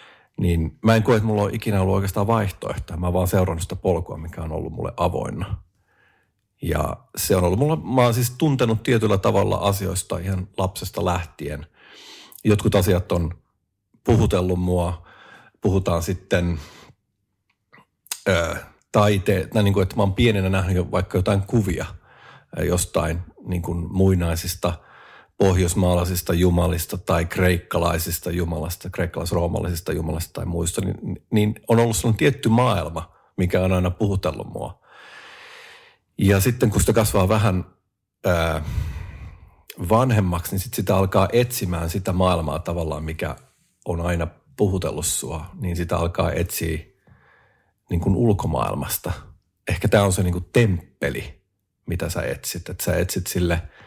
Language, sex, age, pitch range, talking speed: Finnish, male, 50-69, 85-105 Hz, 130 wpm